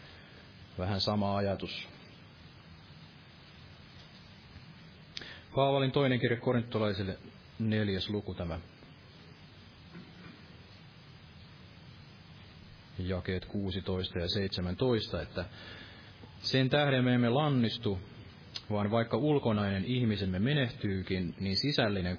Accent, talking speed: native, 75 wpm